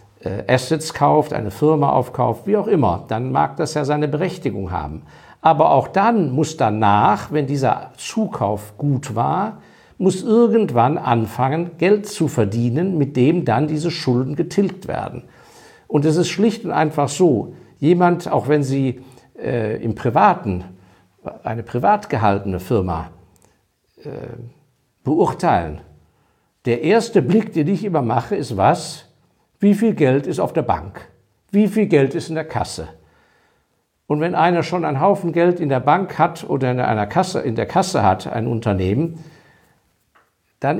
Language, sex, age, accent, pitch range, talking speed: German, male, 50-69, German, 115-170 Hz, 150 wpm